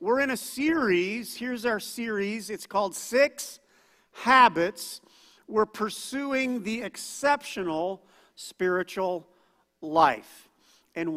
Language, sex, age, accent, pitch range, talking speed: English, male, 50-69, American, 180-235 Hz, 95 wpm